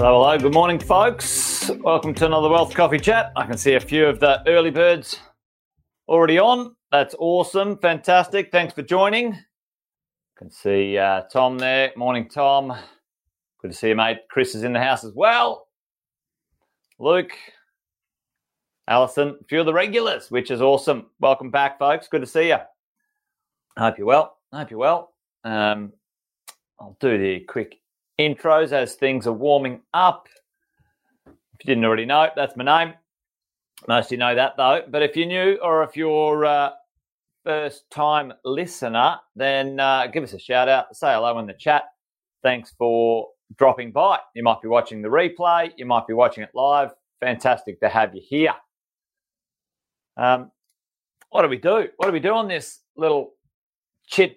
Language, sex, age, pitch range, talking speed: English, male, 30-49, 125-170 Hz, 170 wpm